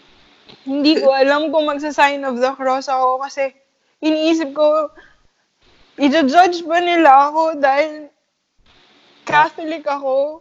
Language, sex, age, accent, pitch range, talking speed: English, female, 20-39, Filipino, 265-345 Hz, 110 wpm